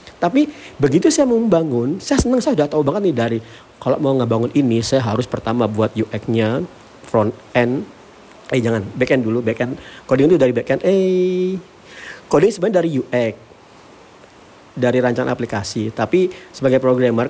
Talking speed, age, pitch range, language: 160 wpm, 40-59, 115-150 Hz, Indonesian